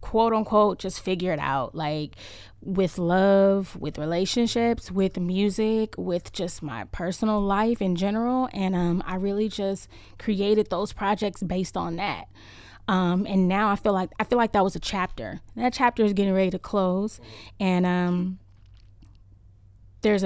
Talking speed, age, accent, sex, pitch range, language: 155 wpm, 10-29, American, female, 175-205 Hz, English